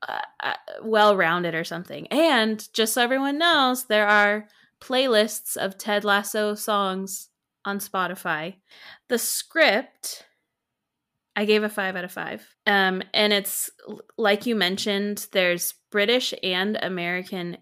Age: 20-39